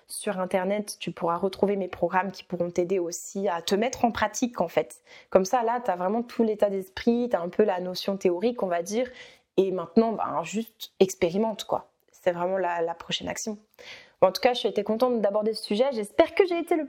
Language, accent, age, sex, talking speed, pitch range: French, French, 20-39, female, 225 wpm, 185-225 Hz